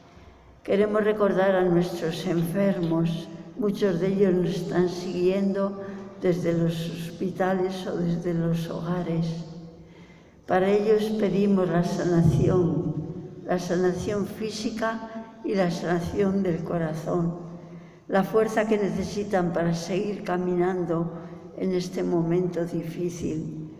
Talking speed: 105 wpm